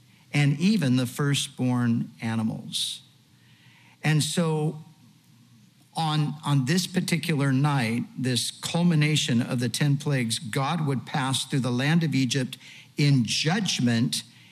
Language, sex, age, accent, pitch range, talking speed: English, male, 50-69, American, 125-165 Hz, 115 wpm